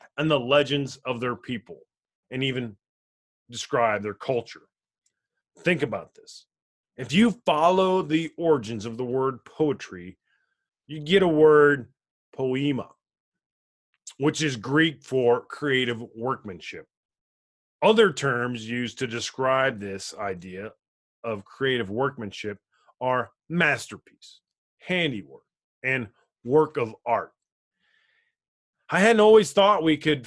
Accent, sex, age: American, male, 30-49